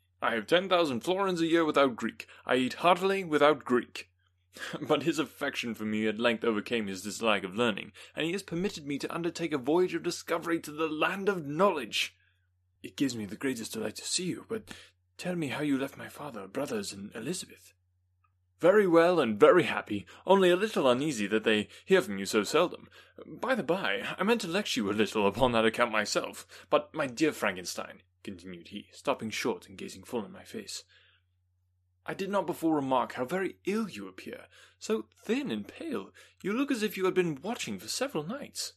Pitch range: 100-165 Hz